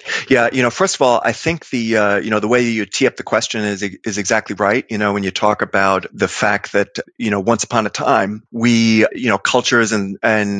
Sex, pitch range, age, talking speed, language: male, 105-125 Hz, 30-49, 250 wpm, English